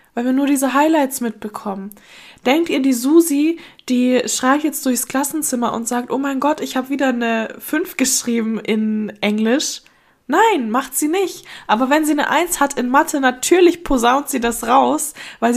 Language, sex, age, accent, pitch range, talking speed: German, female, 10-29, German, 220-275 Hz, 175 wpm